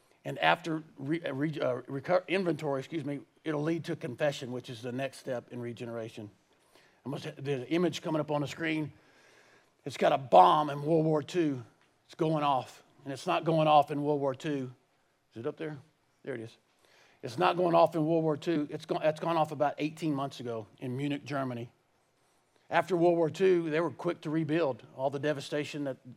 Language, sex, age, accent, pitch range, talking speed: English, male, 50-69, American, 130-155 Hz, 210 wpm